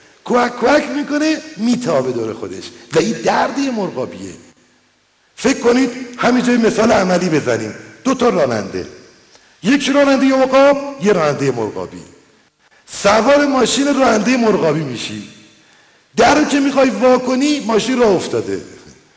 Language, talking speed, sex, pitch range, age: Persian, 120 wpm, male, 205-270 Hz, 50-69